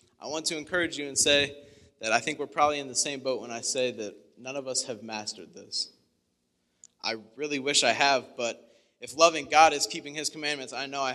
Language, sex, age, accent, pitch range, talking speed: English, male, 20-39, American, 115-145 Hz, 225 wpm